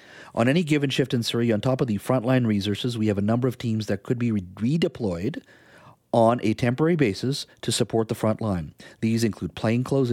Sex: male